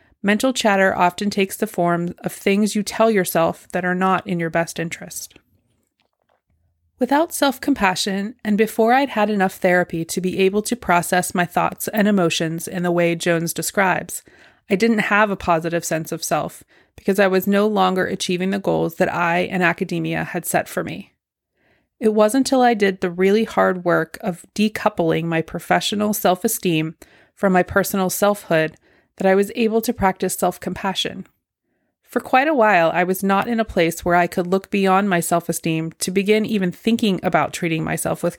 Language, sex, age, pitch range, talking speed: English, female, 20-39, 175-210 Hz, 180 wpm